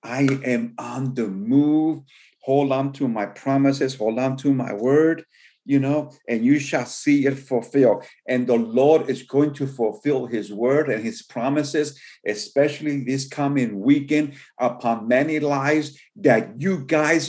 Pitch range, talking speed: 130-150 Hz, 155 wpm